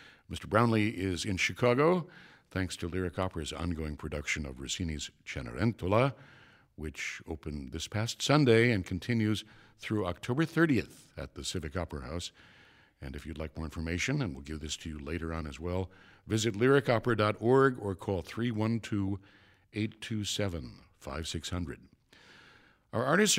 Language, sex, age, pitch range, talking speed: English, male, 60-79, 90-120 Hz, 135 wpm